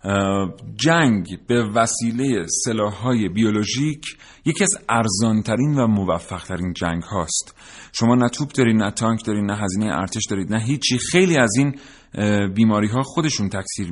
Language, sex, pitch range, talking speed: Persian, male, 100-130 Hz, 130 wpm